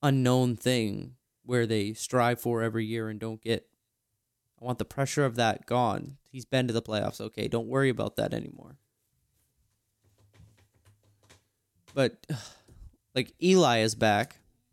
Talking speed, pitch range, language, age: 140 wpm, 110-130 Hz, English, 20-39